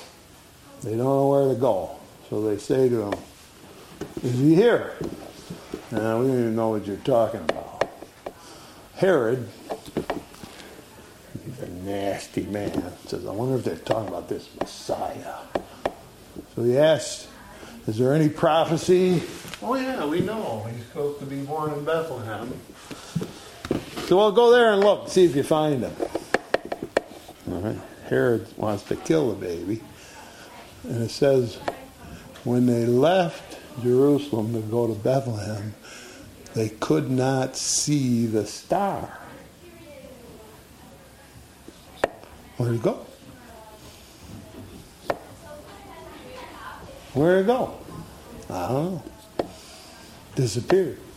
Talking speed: 120 wpm